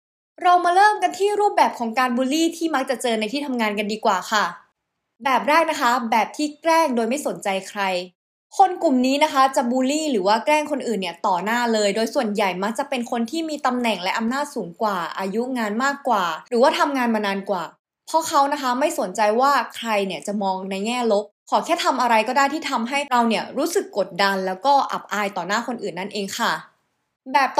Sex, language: female, Thai